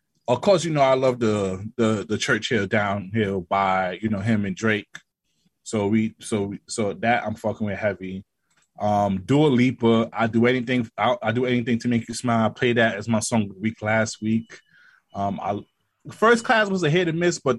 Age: 20-39